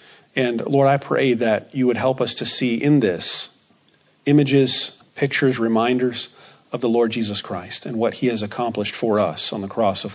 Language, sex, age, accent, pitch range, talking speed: English, male, 40-59, American, 125-165 Hz, 190 wpm